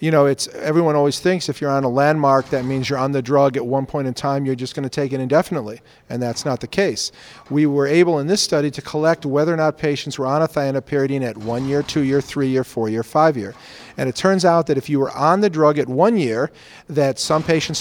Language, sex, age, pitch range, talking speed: English, male, 40-59, 130-155 Hz, 265 wpm